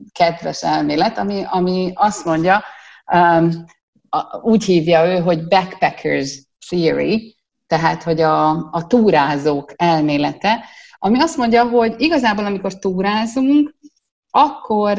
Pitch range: 160-220 Hz